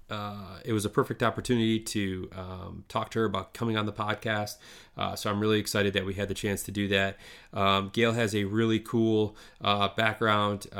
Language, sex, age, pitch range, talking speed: English, male, 20-39, 100-110 Hz, 205 wpm